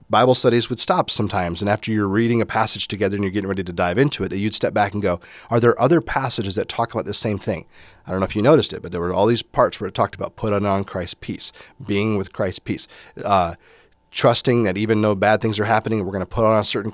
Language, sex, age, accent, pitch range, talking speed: English, male, 30-49, American, 95-120 Hz, 275 wpm